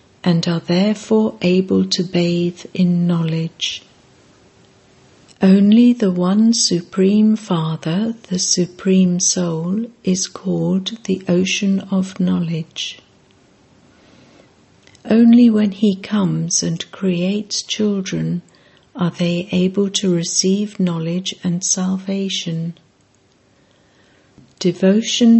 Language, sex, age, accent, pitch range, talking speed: English, female, 60-79, British, 170-195 Hz, 90 wpm